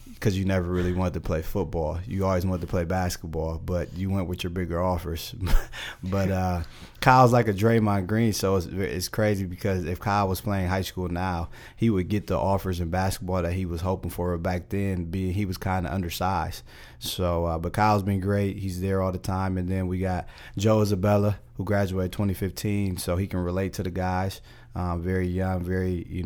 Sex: male